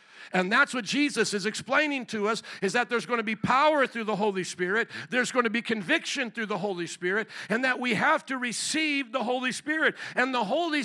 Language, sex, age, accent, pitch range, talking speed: English, male, 50-69, American, 215-280 Hz, 220 wpm